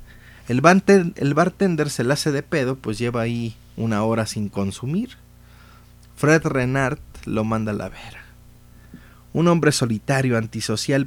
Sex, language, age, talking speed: male, Spanish, 30-49, 135 wpm